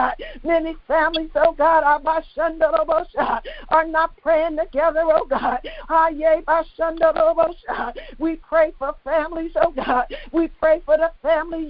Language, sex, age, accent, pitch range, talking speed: English, female, 50-69, American, 315-335 Hz, 110 wpm